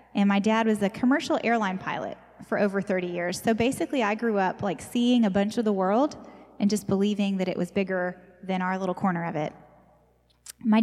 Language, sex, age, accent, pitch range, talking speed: English, female, 20-39, American, 185-230 Hz, 210 wpm